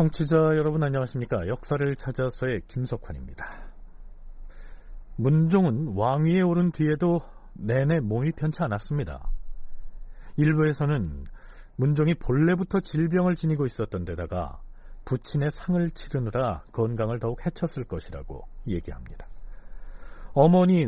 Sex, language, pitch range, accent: male, Korean, 100-160 Hz, native